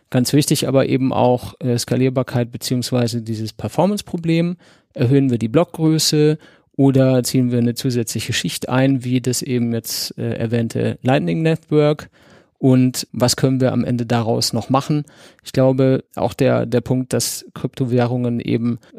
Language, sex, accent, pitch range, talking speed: German, male, German, 120-140 Hz, 150 wpm